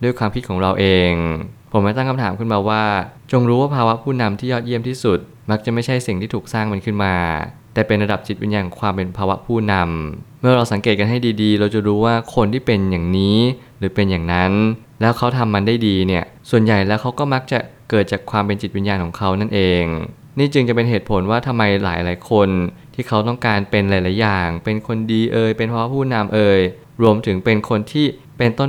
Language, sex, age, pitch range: Thai, male, 20-39, 100-120 Hz